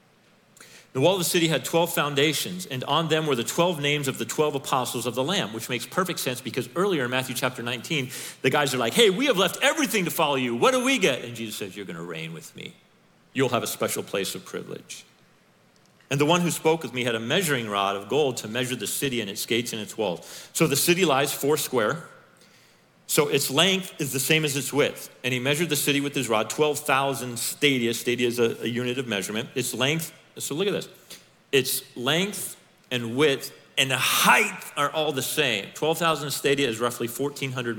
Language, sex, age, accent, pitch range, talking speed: English, male, 40-59, American, 115-155 Hz, 220 wpm